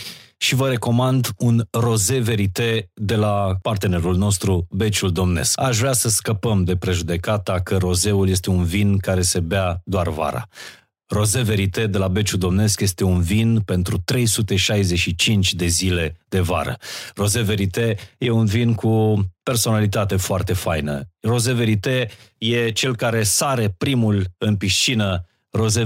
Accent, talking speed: native, 145 wpm